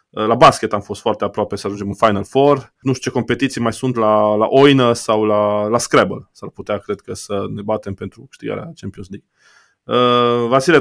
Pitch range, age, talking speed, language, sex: 105-125 Hz, 20-39, 205 wpm, Romanian, male